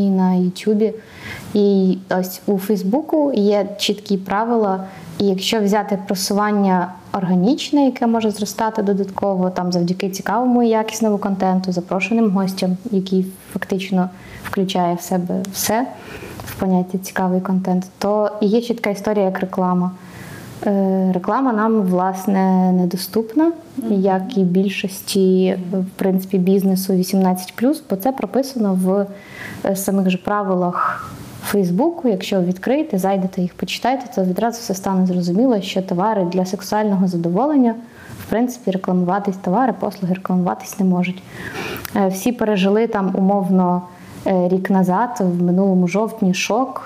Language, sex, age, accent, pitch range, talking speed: Ukrainian, female, 20-39, native, 185-210 Hz, 120 wpm